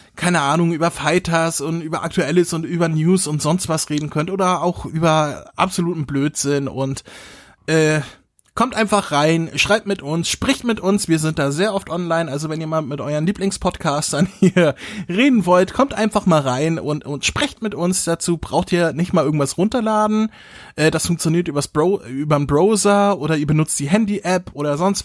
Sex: male